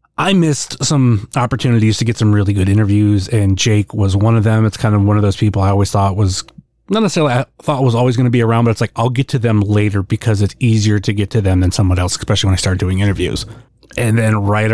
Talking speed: 260 wpm